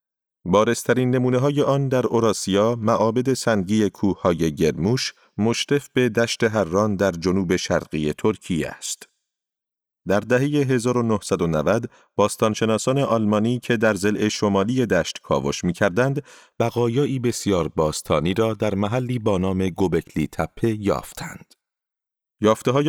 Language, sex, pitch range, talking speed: Persian, male, 95-125 Hz, 115 wpm